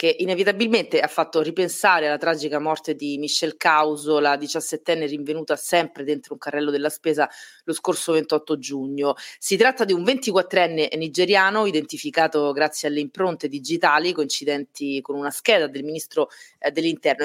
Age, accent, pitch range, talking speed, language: 30-49, native, 150-185 Hz, 145 wpm, Italian